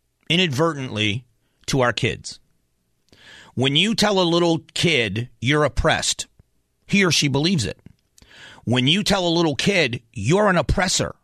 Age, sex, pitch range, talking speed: 40-59, male, 120-165 Hz, 140 wpm